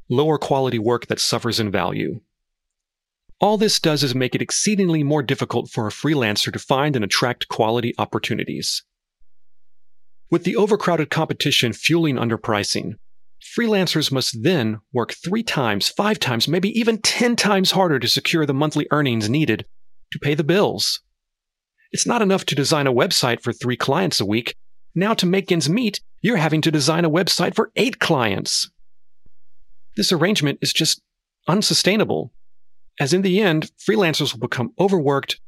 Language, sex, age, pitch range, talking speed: English, male, 40-59, 120-180 Hz, 155 wpm